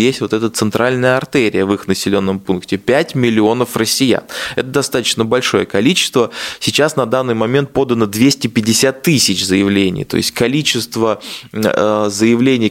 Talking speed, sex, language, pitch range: 130 wpm, male, Russian, 105-130 Hz